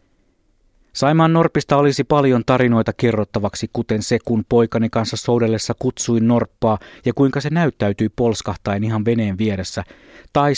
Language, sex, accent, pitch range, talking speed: Finnish, male, native, 105-125 Hz, 130 wpm